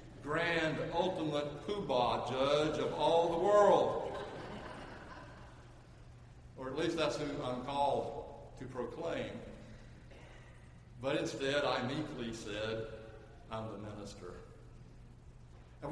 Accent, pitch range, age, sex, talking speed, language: American, 140-215 Hz, 60-79, male, 100 wpm, English